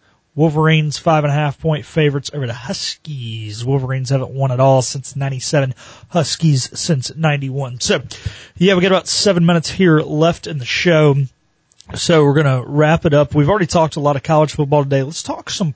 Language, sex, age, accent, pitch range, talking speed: English, male, 30-49, American, 125-155 Hz, 190 wpm